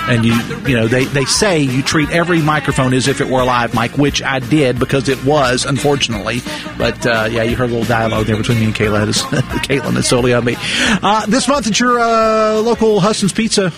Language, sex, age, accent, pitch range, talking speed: English, male, 40-59, American, 130-170 Hz, 235 wpm